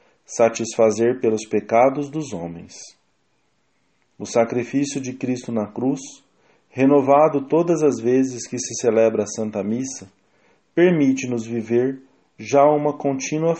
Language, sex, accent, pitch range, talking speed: English, male, Brazilian, 110-140 Hz, 115 wpm